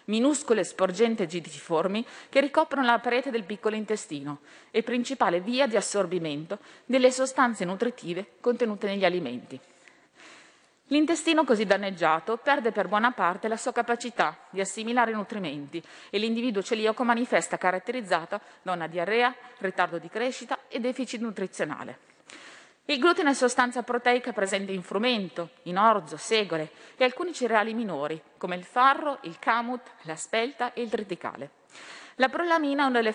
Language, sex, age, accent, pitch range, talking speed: Italian, female, 30-49, native, 185-250 Hz, 140 wpm